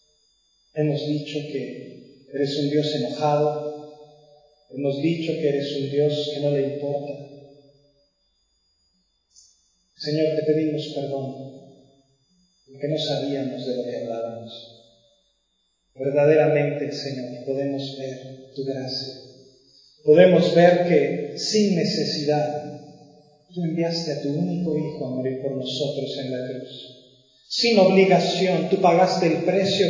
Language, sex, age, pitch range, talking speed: Spanish, male, 30-49, 140-175 Hz, 115 wpm